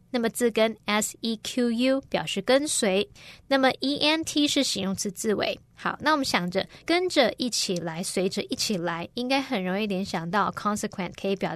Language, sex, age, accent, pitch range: Chinese, female, 20-39, American, 195-255 Hz